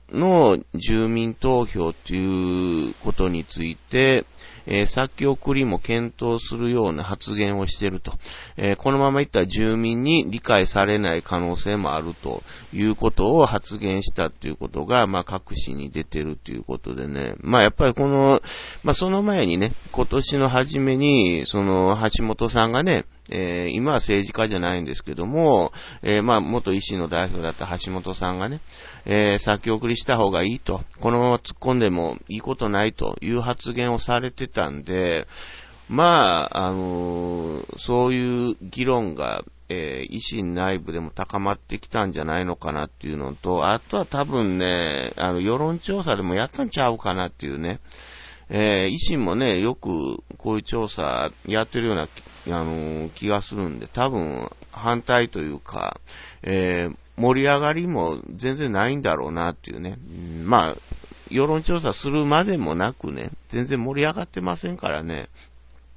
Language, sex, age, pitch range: Japanese, male, 40-59, 85-120 Hz